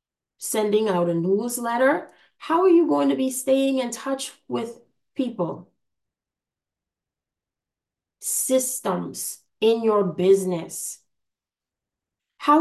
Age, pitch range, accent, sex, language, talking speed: 20-39, 195-260 Hz, American, female, English, 95 wpm